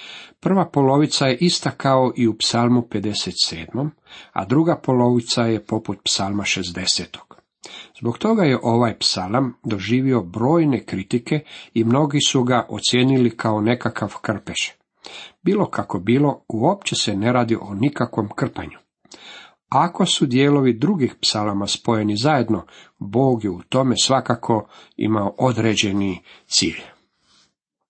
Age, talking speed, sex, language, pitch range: 50-69, 125 wpm, male, Croatian, 105-135 Hz